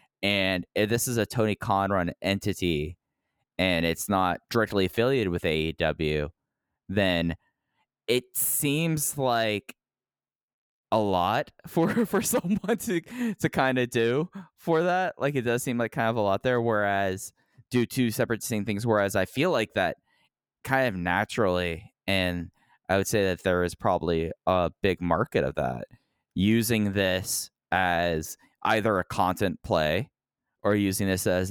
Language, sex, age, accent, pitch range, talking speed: English, male, 10-29, American, 90-115 Hz, 150 wpm